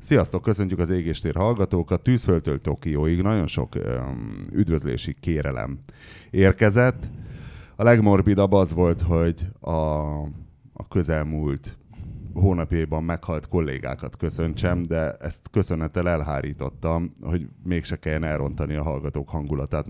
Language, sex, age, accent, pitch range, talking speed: English, male, 30-49, Finnish, 80-105 Hz, 110 wpm